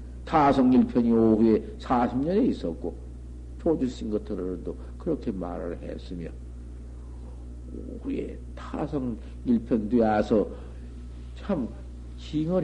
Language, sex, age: Korean, male, 50-69